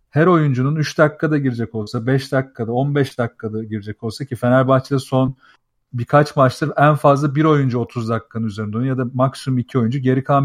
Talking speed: 185 wpm